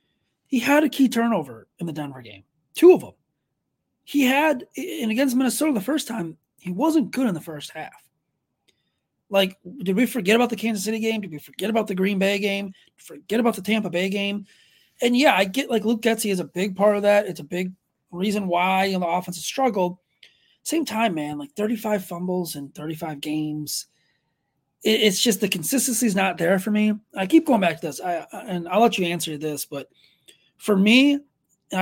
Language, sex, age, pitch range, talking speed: English, male, 30-49, 170-225 Hz, 215 wpm